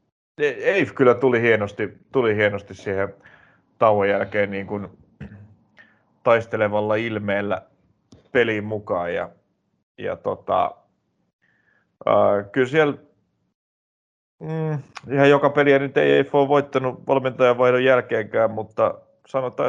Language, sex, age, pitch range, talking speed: Finnish, male, 30-49, 100-125 Hz, 105 wpm